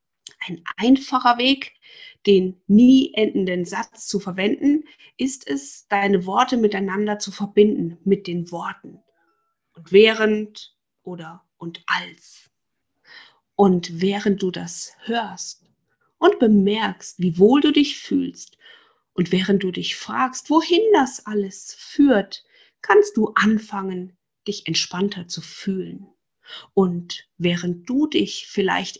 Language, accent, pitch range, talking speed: German, German, 190-260 Hz, 120 wpm